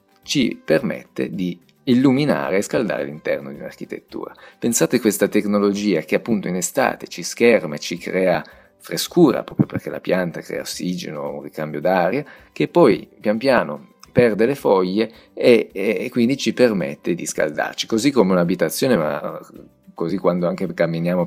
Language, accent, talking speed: Italian, native, 150 wpm